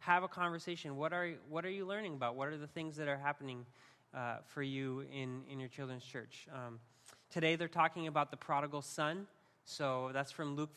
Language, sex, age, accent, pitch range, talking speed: English, male, 20-39, American, 130-160 Hz, 205 wpm